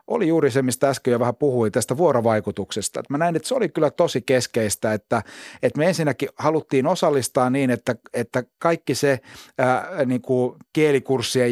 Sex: male